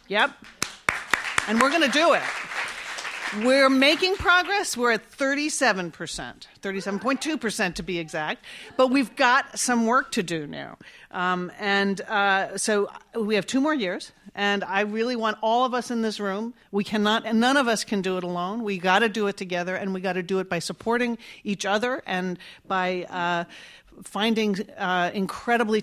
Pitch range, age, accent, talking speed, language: 180-230 Hz, 40-59, American, 180 wpm, English